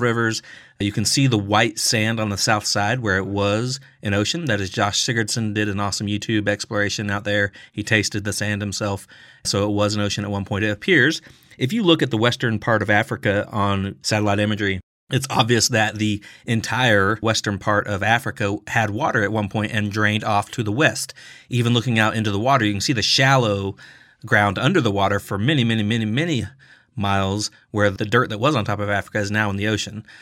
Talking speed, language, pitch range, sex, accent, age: 215 wpm, English, 100-115 Hz, male, American, 30-49